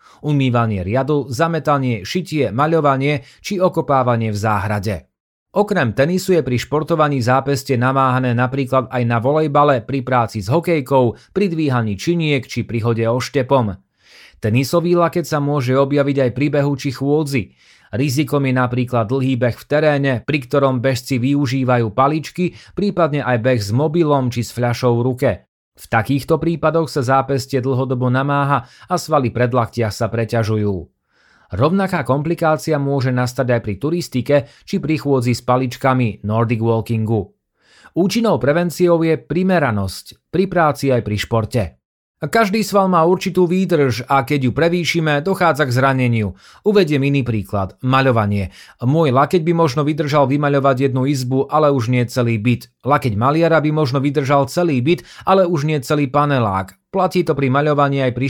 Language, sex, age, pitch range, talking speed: Slovak, male, 30-49, 120-150 Hz, 150 wpm